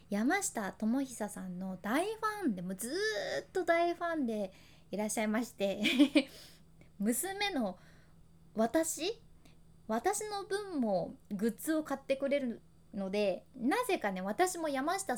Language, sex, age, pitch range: Japanese, female, 20-39, 200-285 Hz